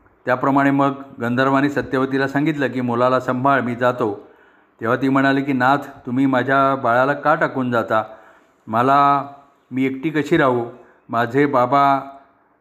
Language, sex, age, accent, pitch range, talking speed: Marathi, male, 40-59, native, 120-135 Hz, 135 wpm